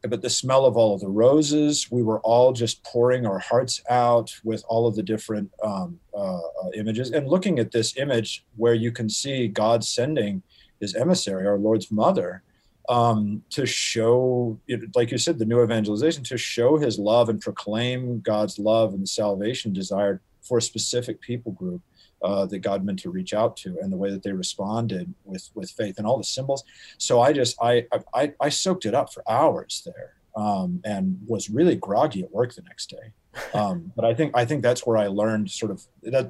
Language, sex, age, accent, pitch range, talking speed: English, male, 40-59, American, 100-125 Hz, 200 wpm